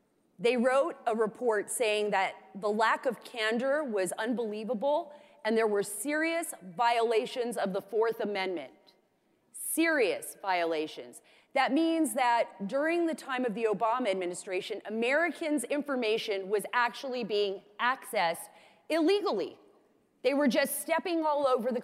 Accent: American